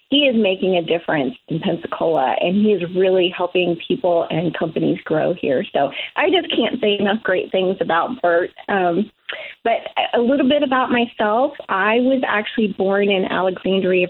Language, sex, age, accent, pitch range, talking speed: English, female, 30-49, American, 185-225 Hz, 170 wpm